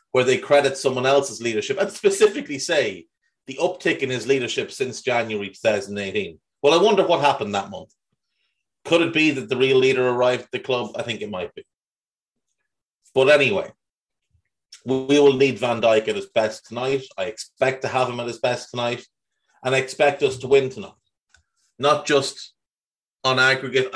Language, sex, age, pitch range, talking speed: English, male, 30-49, 115-145 Hz, 180 wpm